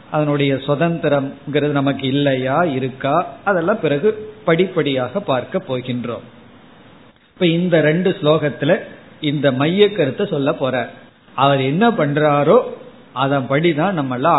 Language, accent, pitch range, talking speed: Tamil, native, 140-180 Hz, 55 wpm